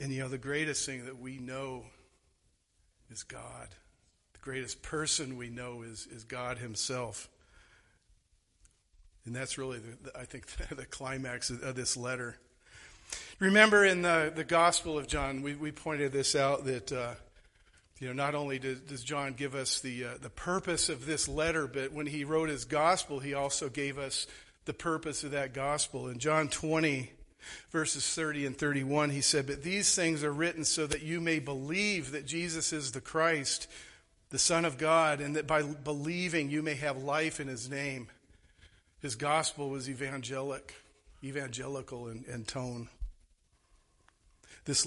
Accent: American